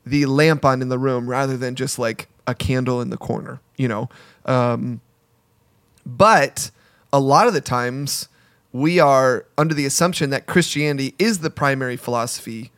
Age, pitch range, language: 30-49, 125-150 Hz, English